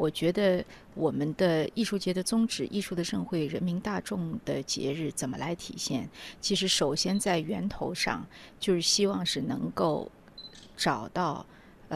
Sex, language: female, Chinese